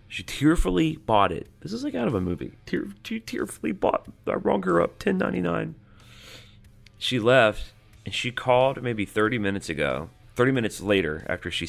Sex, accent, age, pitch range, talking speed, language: male, American, 30-49, 90-115 Hz, 185 wpm, English